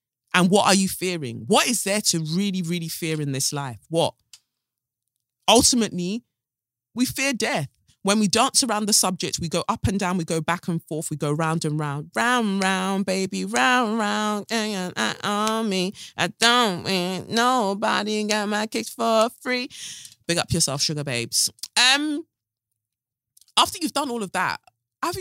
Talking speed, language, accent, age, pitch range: 175 wpm, English, British, 20-39, 130-195 Hz